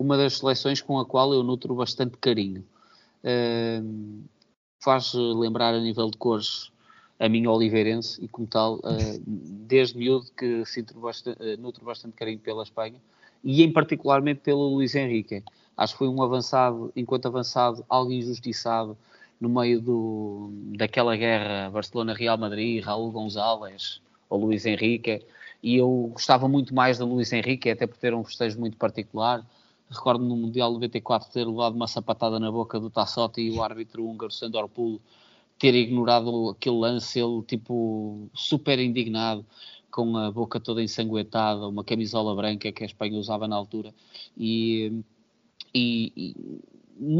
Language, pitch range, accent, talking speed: Portuguese, 110-130 Hz, Portuguese, 155 wpm